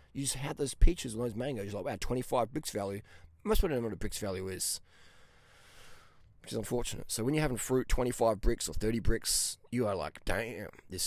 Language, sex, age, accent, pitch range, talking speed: English, male, 20-39, Australian, 95-125 Hz, 220 wpm